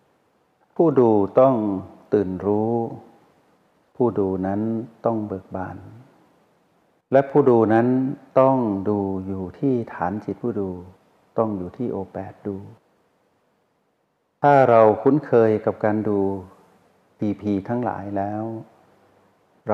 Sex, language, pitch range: male, Thai, 95-120 Hz